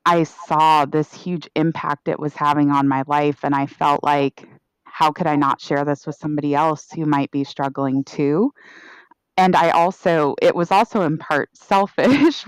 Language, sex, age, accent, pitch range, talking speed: English, female, 20-39, American, 145-175 Hz, 185 wpm